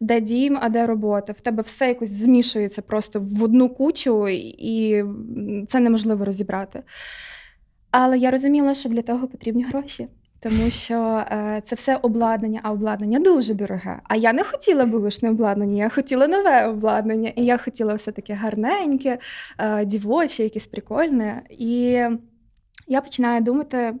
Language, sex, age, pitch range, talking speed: Ukrainian, female, 20-39, 220-255 Hz, 145 wpm